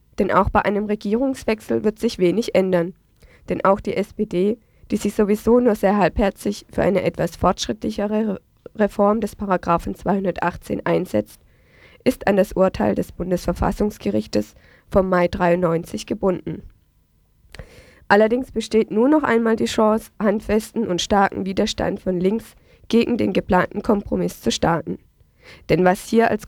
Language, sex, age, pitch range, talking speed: German, female, 20-39, 180-215 Hz, 140 wpm